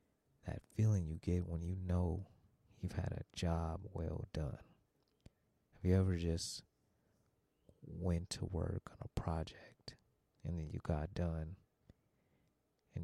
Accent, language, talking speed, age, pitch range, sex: American, English, 135 wpm, 30-49, 85-100 Hz, male